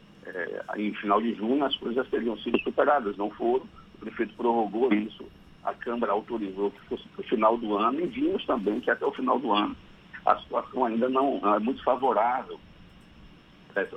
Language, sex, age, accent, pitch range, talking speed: Portuguese, male, 50-69, Brazilian, 100-135 Hz, 185 wpm